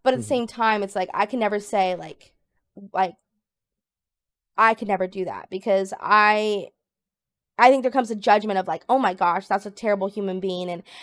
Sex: female